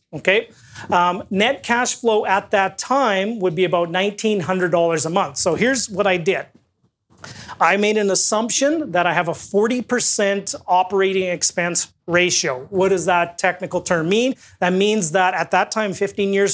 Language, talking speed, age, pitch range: English, 165 wpm, 30-49, 175-220 Hz